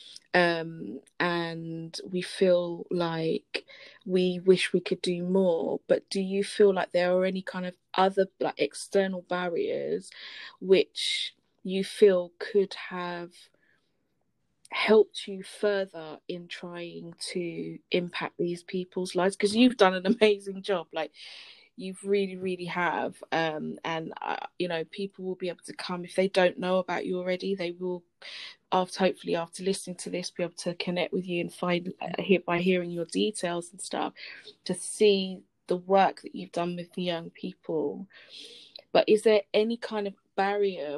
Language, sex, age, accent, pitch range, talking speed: English, female, 20-39, British, 175-195 Hz, 160 wpm